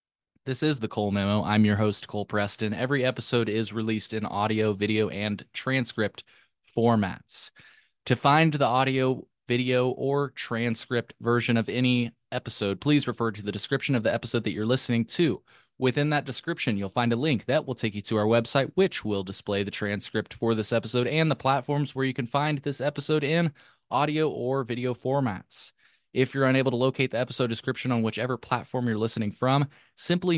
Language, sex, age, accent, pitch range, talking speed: English, male, 20-39, American, 110-140 Hz, 185 wpm